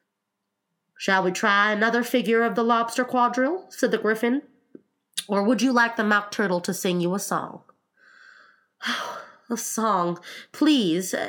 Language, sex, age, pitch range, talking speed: English, female, 20-39, 205-330 Hz, 145 wpm